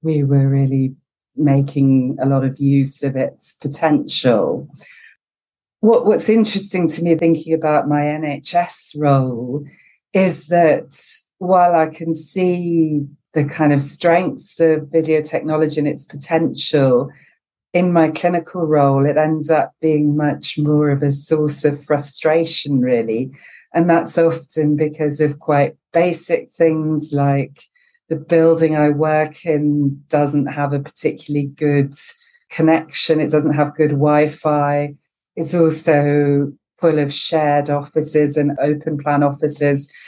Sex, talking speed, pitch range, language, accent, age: female, 130 wpm, 140-160 Hz, English, British, 40-59